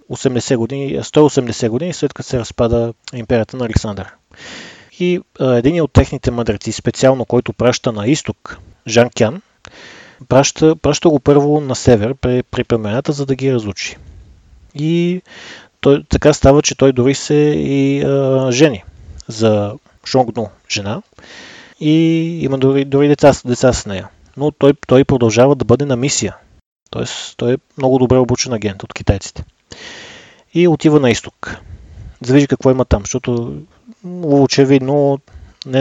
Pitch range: 110-140 Hz